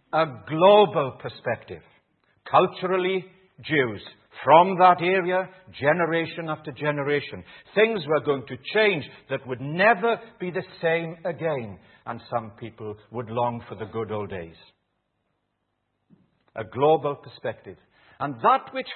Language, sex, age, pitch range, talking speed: English, male, 60-79, 120-185 Hz, 125 wpm